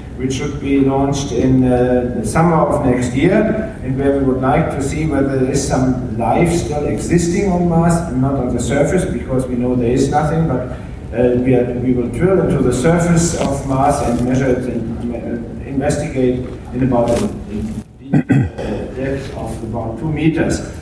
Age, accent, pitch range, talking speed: 50-69, German, 125-150 Hz, 200 wpm